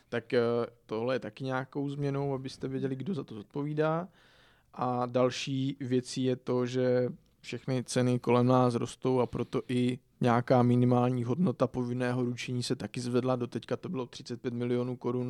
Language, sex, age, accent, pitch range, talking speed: Czech, male, 20-39, native, 120-130 Hz, 155 wpm